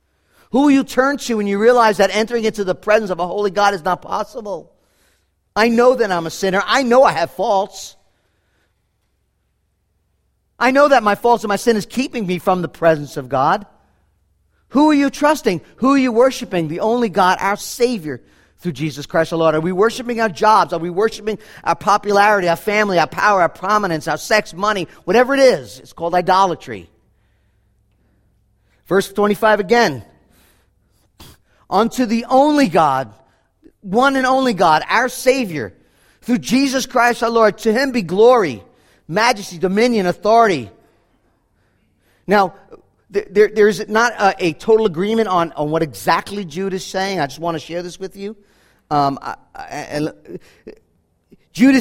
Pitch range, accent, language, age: 165-240 Hz, American, English, 50-69